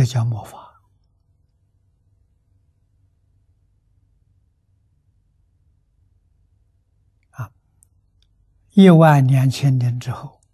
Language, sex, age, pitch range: Chinese, male, 60-79, 95-130 Hz